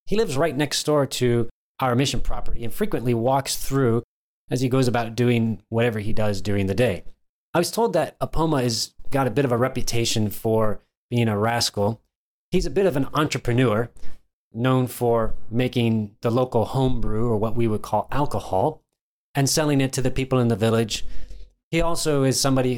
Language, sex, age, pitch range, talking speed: English, male, 30-49, 110-135 Hz, 185 wpm